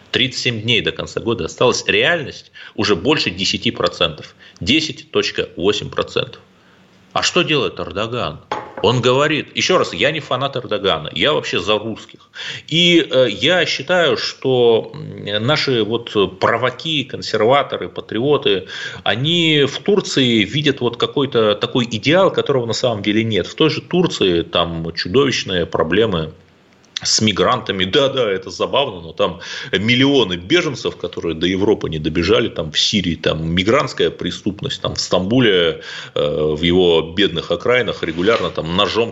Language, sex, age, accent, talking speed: Russian, male, 30-49, native, 135 wpm